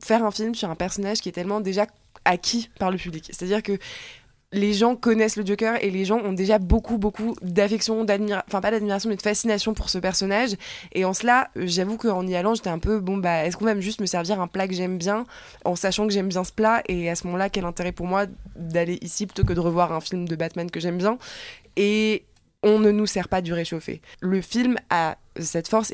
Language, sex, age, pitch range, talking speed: French, female, 20-39, 185-220 Hz, 240 wpm